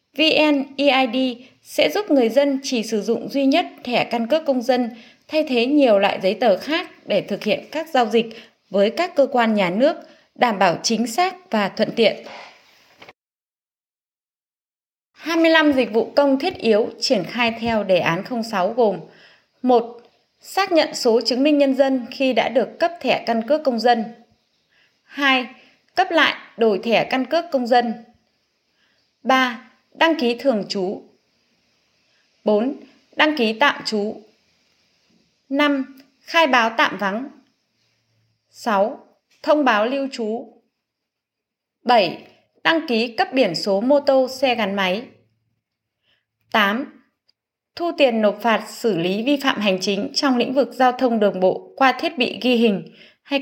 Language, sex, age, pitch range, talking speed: Vietnamese, female, 20-39, 220-280 Hz, 150 wpm